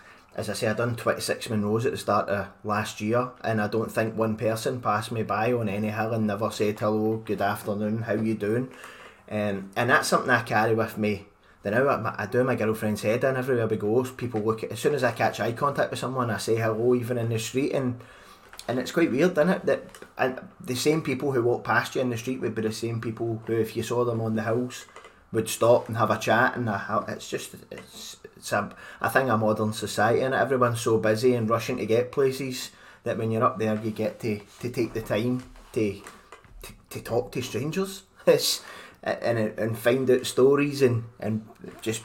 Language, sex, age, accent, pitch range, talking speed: English, male, 20-39, British, 110-125 Hz, 225 wpm